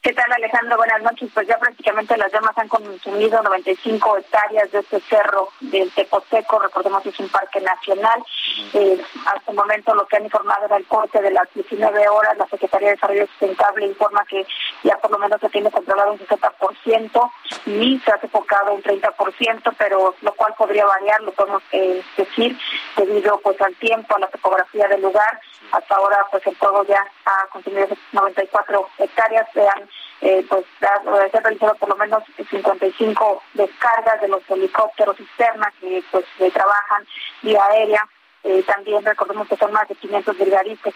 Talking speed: 175 wpm